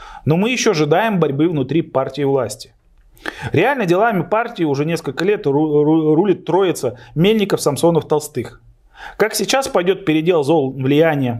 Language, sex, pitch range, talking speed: Russian, male, 125-170 Hz, 120 wpm